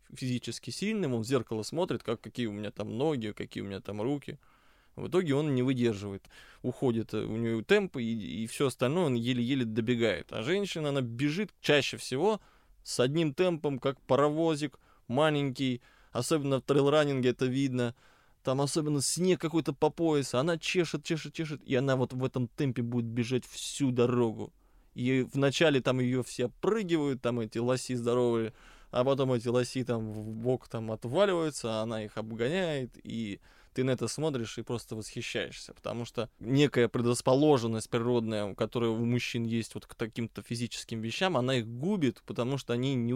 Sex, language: male, Russian